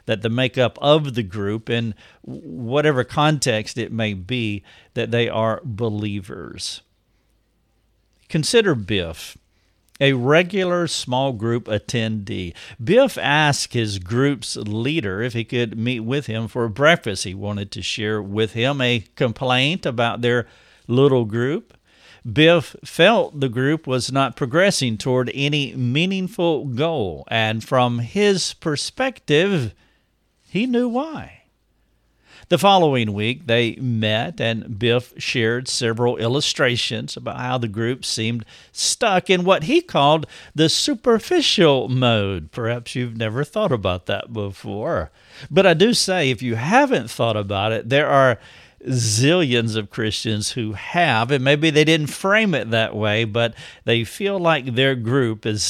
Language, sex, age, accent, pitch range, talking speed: English, male, 50-69, American, 110-145 Hz, 140 wpm